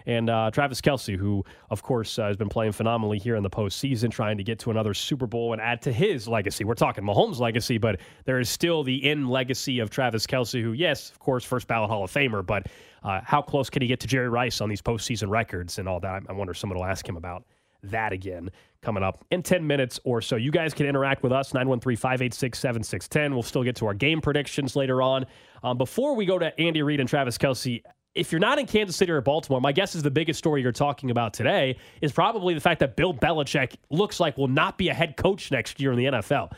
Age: 30-49